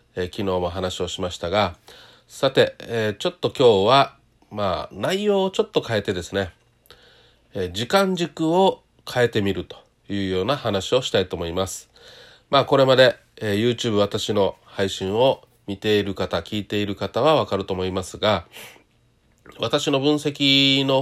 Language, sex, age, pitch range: Japanese, male, 40-59, 95-140 Hz